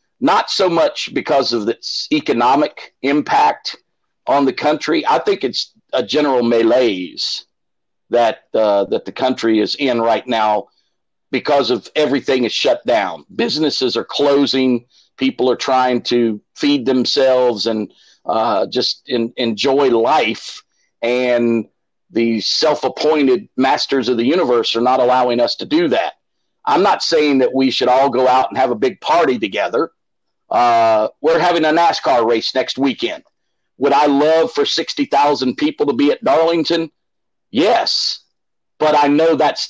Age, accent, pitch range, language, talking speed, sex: 50-69, American, 120-145 Hz, English, 150 wpm, male